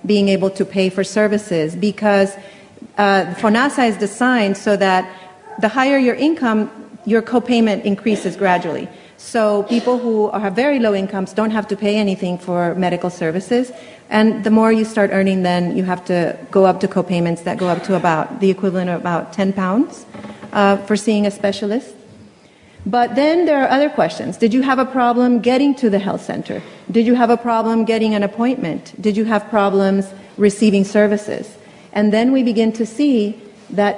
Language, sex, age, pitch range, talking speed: English, female, 40-59, 195-225 Hz, 180 wpm